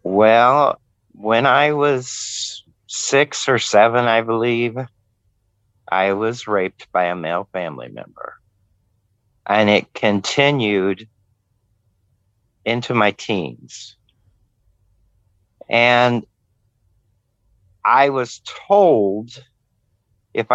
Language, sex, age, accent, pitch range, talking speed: English, male, 50-69, American, 100-120 Hz, 80 wpm